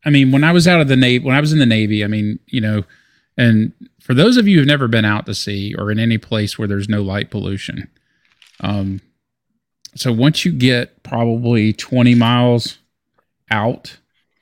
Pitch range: 105-125 Hz